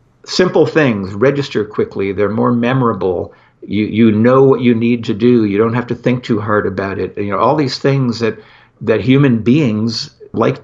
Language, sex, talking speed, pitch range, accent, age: English, male, 195 wpm, 105-125 Hz, American, 60-79